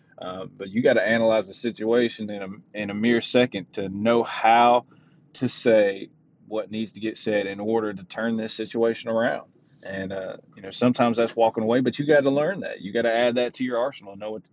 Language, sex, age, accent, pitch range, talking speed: English, male, 30-49, American, 110-150 Hz, 230 wpm